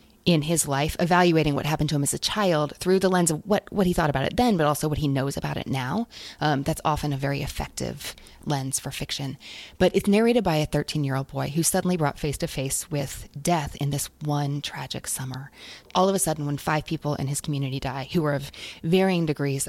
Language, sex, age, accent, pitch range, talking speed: English, female, 20-39, American, 135-170 Hz, 220 wpm